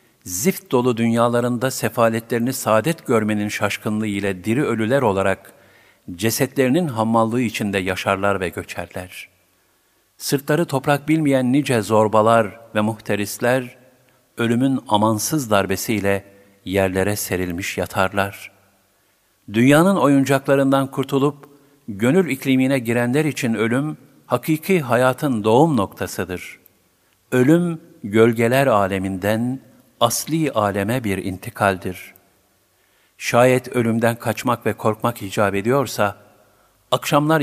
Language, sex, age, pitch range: Turkish, male, 50-69, 100-130 Hz